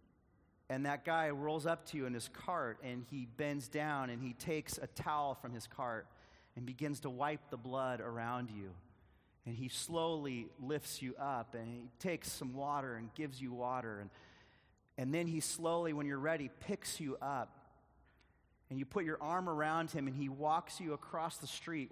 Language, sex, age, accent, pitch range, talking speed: English, male, 30-49, American, 120-160 Hz, 190 wpm